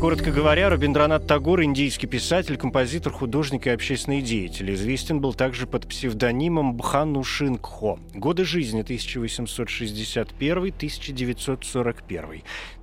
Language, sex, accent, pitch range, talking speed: Russian, male, native, 115-145 Hz, 110 wpm